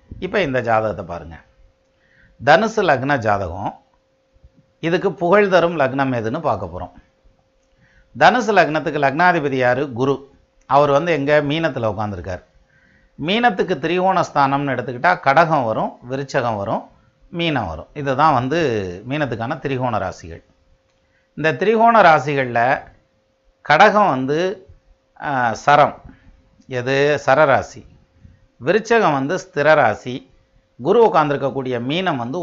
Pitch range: 125-170 Hz